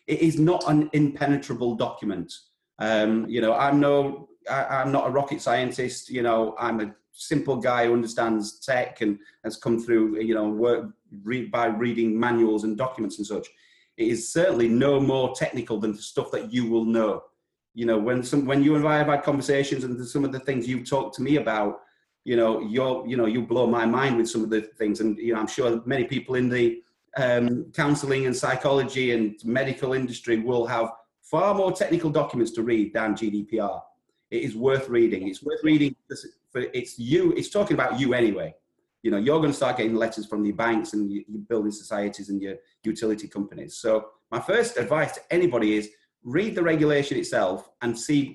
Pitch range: 115-140 Hz